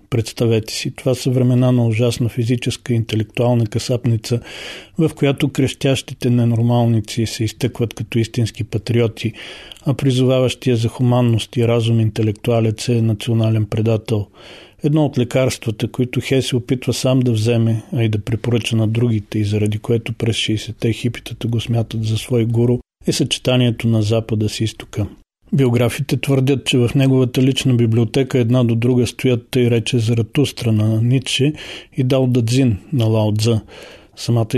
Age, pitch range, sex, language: 40-59, 115-130 Hz, male, Bulgarian